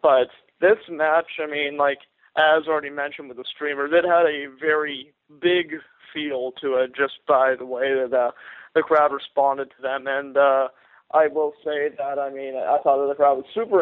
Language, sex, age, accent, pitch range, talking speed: English, male, 20-39, American, 140-155 Hz, 200 wpm